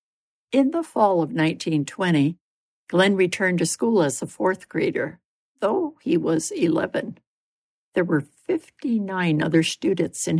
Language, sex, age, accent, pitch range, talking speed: English, female, 60-79, American, 160-230 Hz, 135 wpm